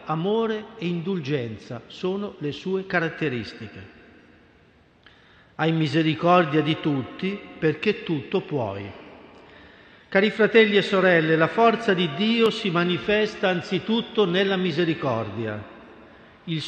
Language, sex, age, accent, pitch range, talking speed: Italian, male, 50-69, native, 150-195 Hz, 100 wpm